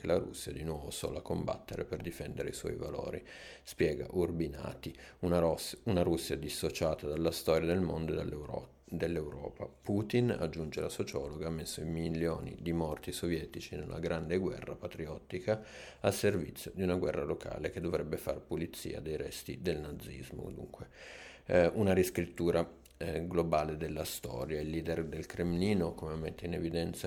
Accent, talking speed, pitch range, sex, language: native, 155 wpm, 80-90 Hz, male, Italian